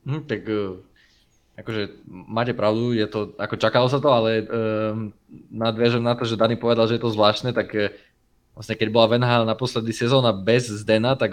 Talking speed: 190 wpm